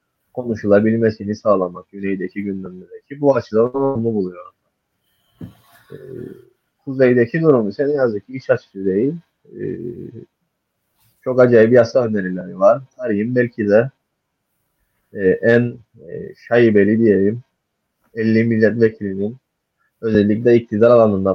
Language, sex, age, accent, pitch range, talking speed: Turkish, male, 30-49, native, 100-130 Hz, 105 wpm